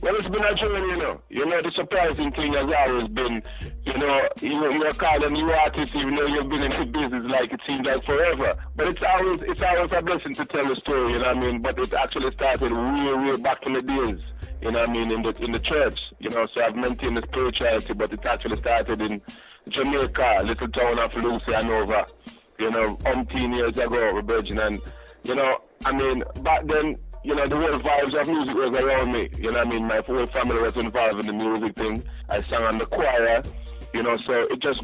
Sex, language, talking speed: male, English, 250 wpm